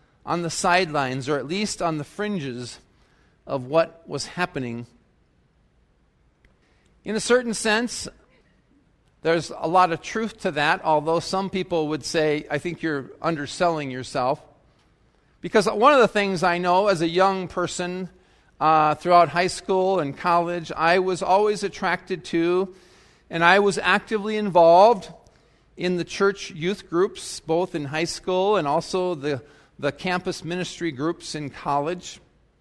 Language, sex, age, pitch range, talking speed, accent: English, male, 40-59, 150-180 Hz, 145 wpm, American